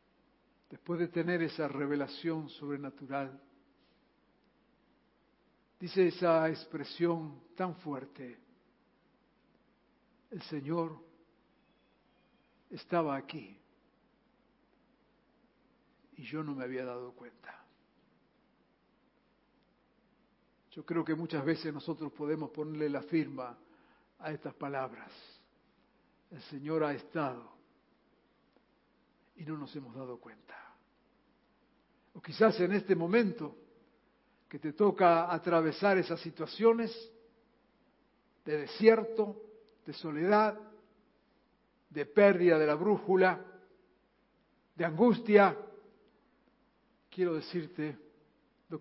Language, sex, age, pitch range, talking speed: Spanish, male, 60-79, 150-225 Hz, 85 wpm